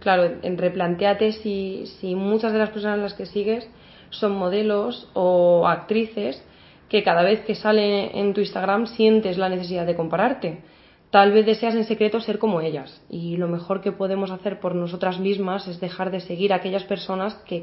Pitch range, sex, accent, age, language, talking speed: 180-210 Hz, female, Spanish, 20-39, Spanish, 185 wpm